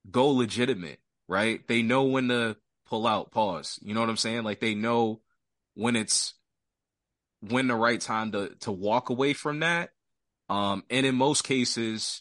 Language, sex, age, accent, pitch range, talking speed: English, male, 20-39, American, 110-135 Hz, 170 wpm